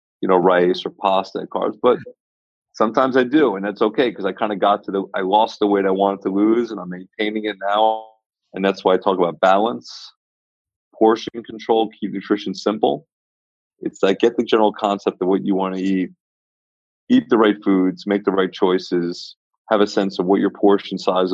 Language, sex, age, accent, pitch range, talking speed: English, male, 30-49, American, 95-110 Hz, 205 wpm